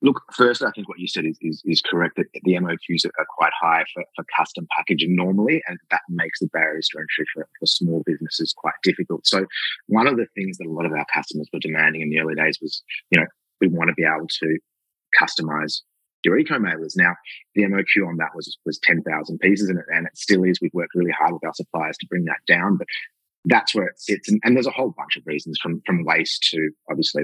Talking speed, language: 240 wpm, English